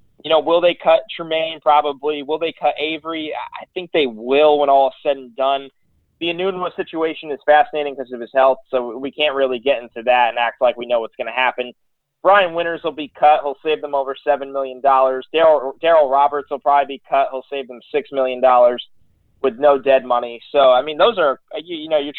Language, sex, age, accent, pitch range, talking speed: English, male, 20-39, American, 130-155 Hz, 215 wpm